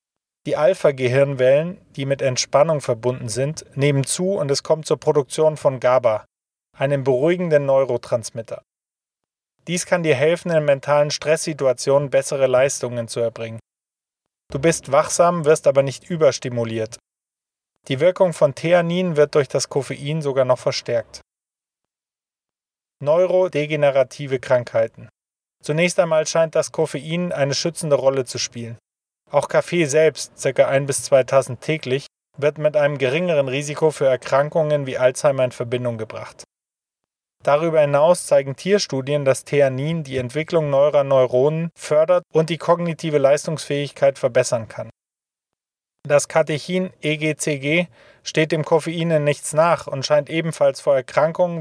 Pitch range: 135-160 Hz